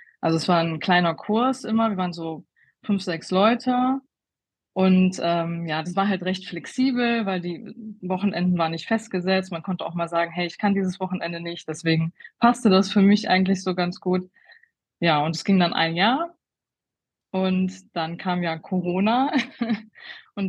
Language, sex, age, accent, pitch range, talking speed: German, female, 20-39, German, 165-200 Hz, 175 wpm